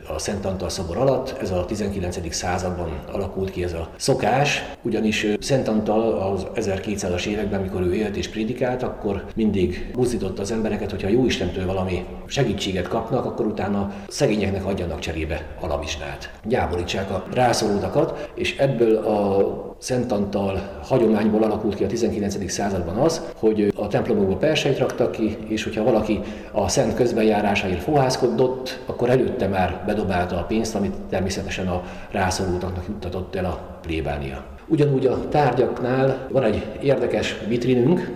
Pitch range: 95-120 Hz